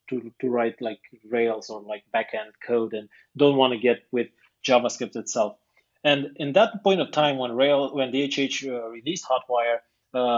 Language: English